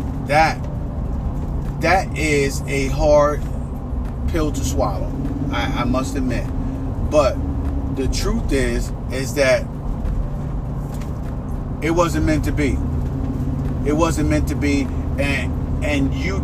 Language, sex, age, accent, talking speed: English, male, 30-49, American, 115 wpm